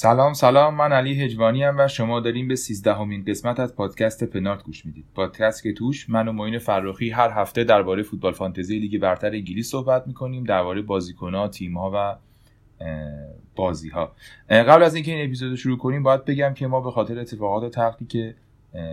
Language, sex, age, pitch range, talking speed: Persian, male, 30-49, 95-115 Hz, 175 wpm